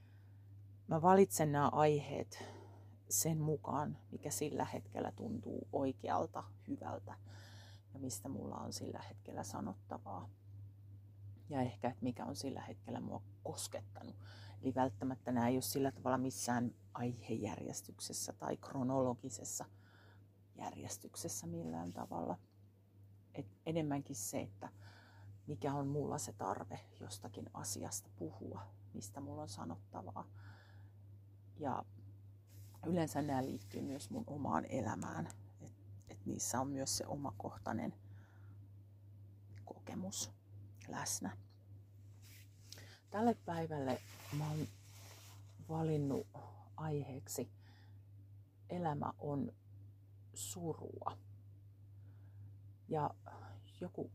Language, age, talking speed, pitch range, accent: Finnish, 40-59, 95 wpm, 100-130 Hz, native